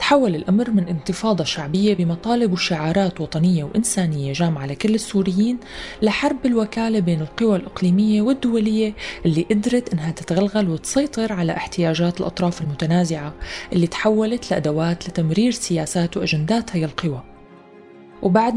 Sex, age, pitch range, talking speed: female, 20-39, 165-210 Hz, 115 wpm